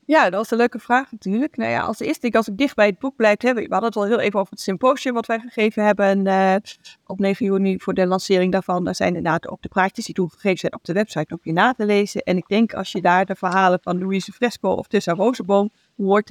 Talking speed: 270 wpm